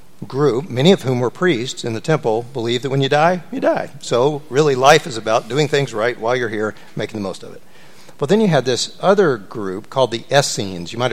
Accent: American